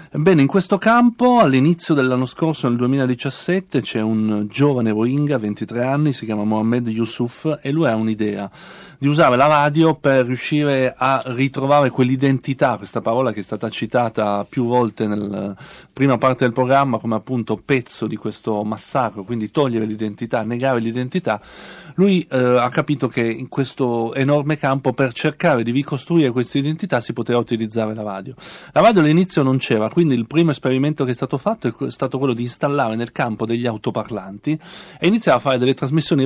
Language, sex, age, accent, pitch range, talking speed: Italian, male, 40-59, native, 115-145 Hz, 170 wpm